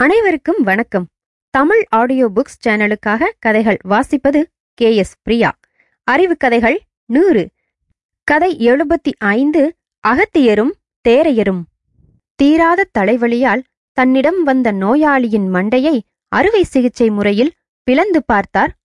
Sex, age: female, 20-39